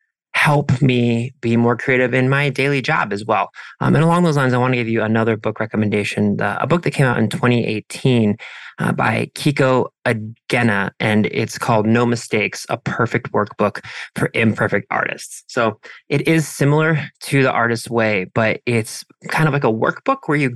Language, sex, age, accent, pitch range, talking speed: English, male, 20-39, American, 115-140 Hz, 185 wpm